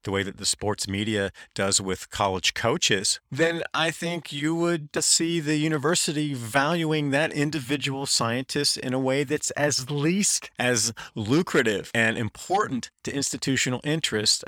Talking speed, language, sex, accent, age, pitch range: 145 wpm, English, male, American, 40-59, 105-145 Hz